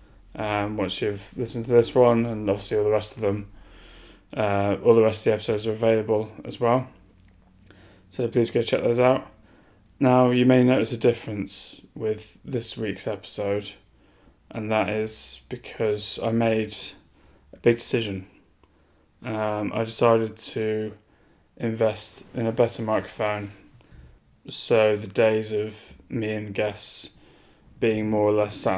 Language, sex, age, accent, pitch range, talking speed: English, male, 10-29, British, 100-115 Hz, 150 wpm